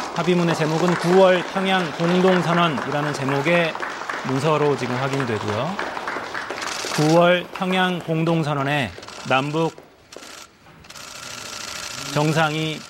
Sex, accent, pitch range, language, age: male, native, 125-175 Hz, Korean, 40-59